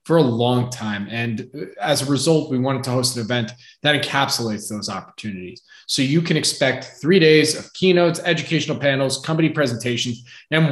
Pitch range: 125-155 Hz